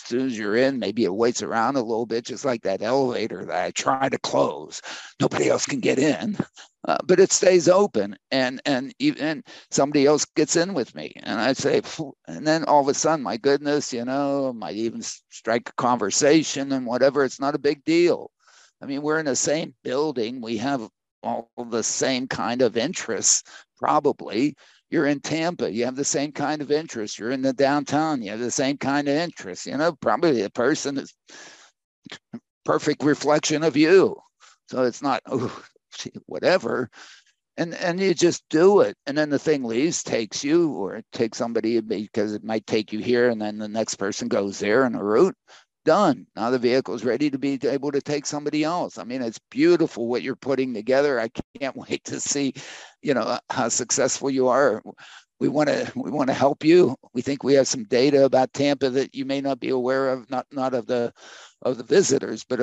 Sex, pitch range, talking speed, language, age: male, 125-155 Hz, 205 wpm, English, 50-69